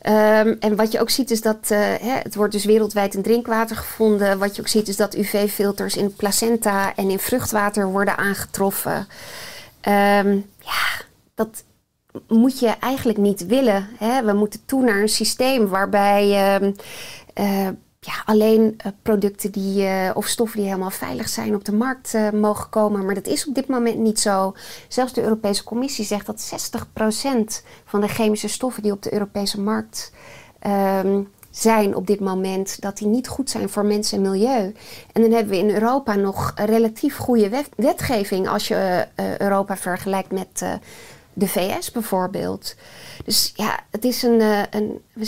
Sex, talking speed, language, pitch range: female, 175 wpm, Dutch, 200-225 Hz